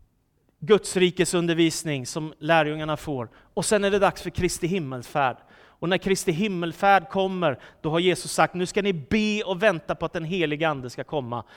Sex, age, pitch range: male, 30-49, 175-220 Hz